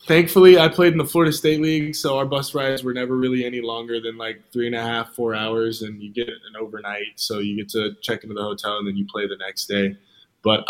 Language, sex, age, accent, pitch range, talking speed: English, male, 20-39, American, 115-135 Hz, 260 wpm